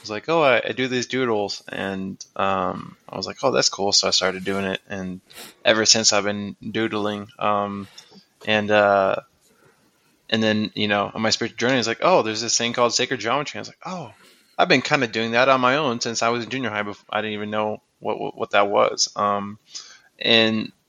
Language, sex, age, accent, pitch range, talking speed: English, male, 20-39, American, 100-115 Hz, 225 wpm